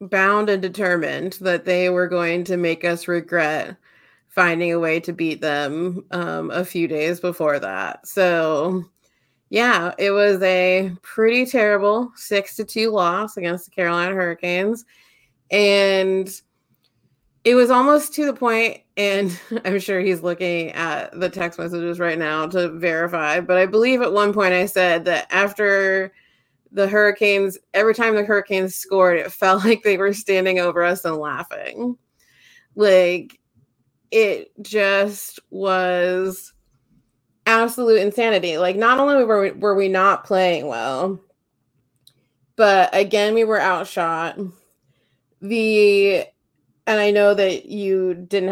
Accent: American